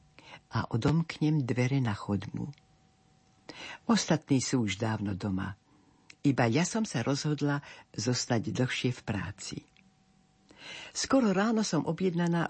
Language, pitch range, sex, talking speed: Slovak, 125-165 Hz, female, 110 wpm